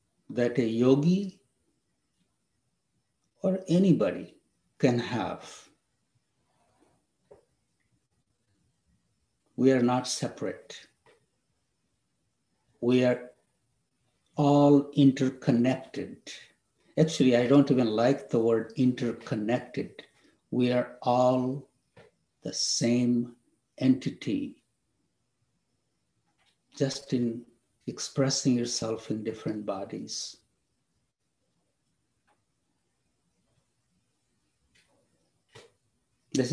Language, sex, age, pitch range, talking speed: English, male, 60-79, 120-140 Hz, 60 wpm